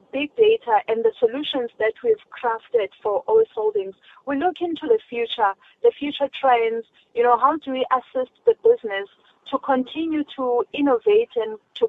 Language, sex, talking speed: English, female, 165 wpm